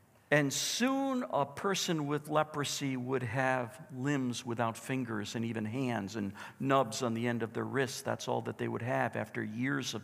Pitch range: 115-170 Hz